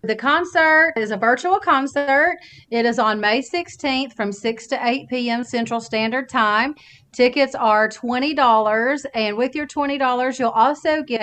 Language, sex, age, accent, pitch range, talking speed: English, female, 30-49, American, 220-270 Hz, 155 wpm